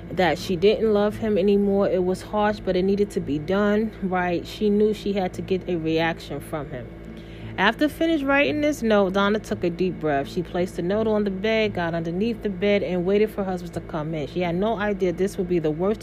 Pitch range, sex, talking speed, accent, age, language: 175-210 Hz, female, 240 wpm, American, 30-49, English